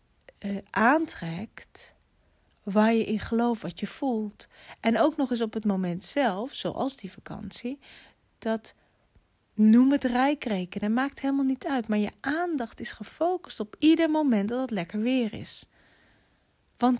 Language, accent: Dutch, Dutch